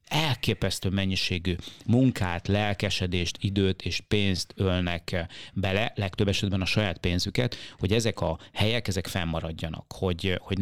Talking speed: 125 wpm